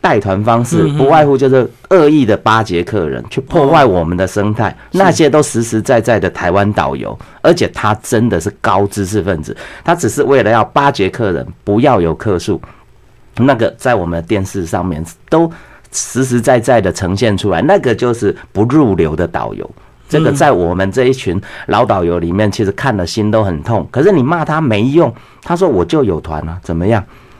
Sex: male